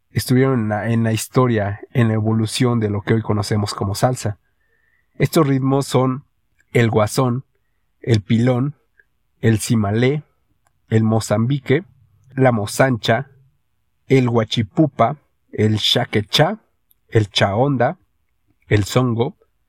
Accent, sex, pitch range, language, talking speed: Mexican, male, 105-125 Hz, Spanish, 115 wpm